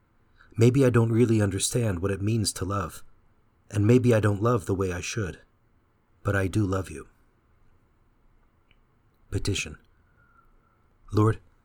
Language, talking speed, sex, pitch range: English, 135 wpm, male, 95-120 Hz